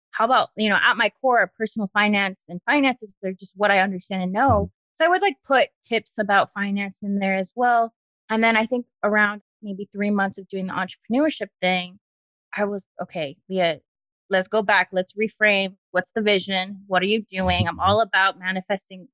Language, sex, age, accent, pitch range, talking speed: English, female, 20-39, American, 185-220 Hz, 200 wpm